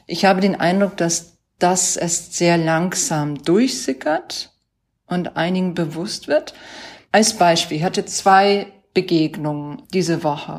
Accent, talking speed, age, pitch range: German, 125 wpm, 40-59, 155-180 Hz